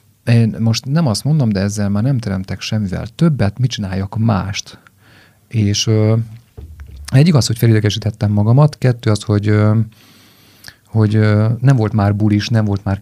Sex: male